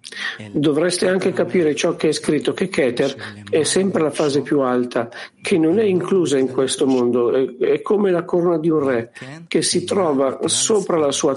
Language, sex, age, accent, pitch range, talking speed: Italian, male, 50-69, native, 125-160 Hz, 185 wpm